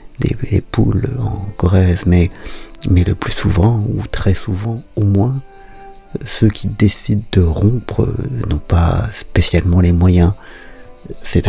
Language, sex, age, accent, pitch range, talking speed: French, male, 50-69, French, 90-110 Hz, 140 wpm